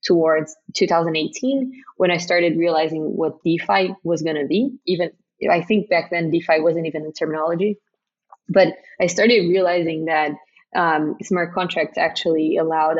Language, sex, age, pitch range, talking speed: English, female, 20-39, 160-200 Hz, 145 wpm